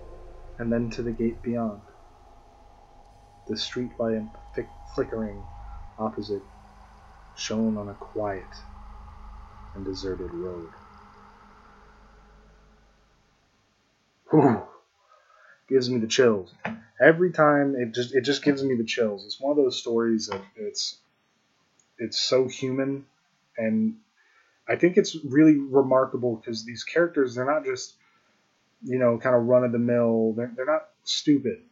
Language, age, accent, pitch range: English, 20-39, American, 110-135 Hz